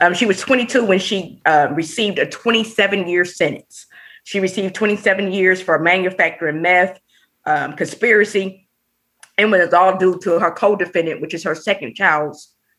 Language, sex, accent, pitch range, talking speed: English, female, American, 180-210 Hz, 160 wpm